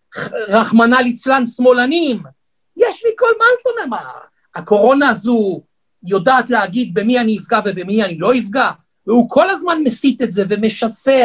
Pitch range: 220-300 Hz